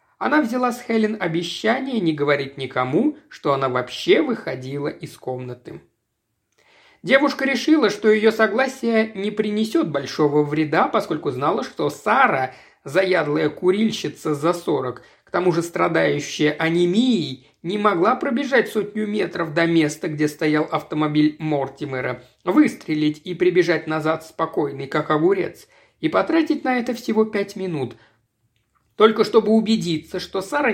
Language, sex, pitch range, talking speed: Russian, male, 155-225 Hz, 130 wpm